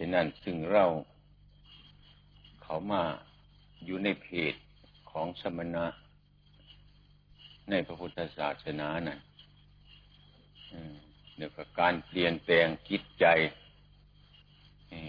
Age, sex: 60-79, male